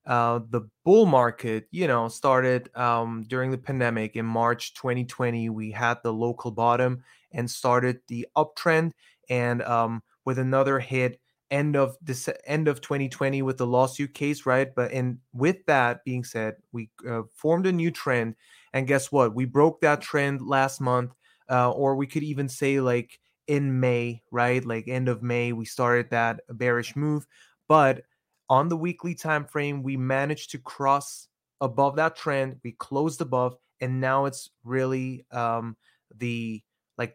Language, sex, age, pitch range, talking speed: English, male, 20-39, 120-145 Hz, 165 wpm